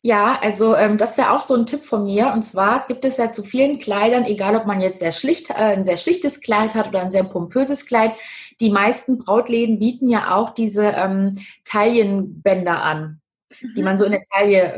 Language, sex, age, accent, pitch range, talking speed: German, female, 20-39, German, 195-235 Hz, 205 wpm